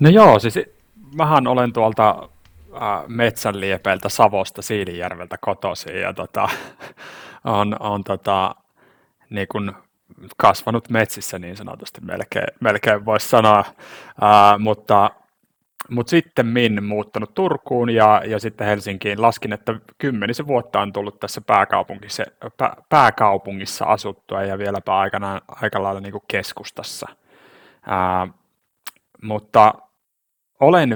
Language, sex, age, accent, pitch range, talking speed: Finnish, male, 30-49, native, 95-110 Hz, 105 wpm